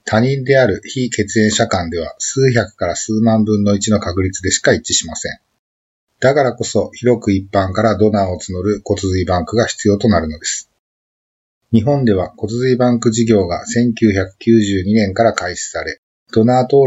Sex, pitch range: male, 95-120 Hz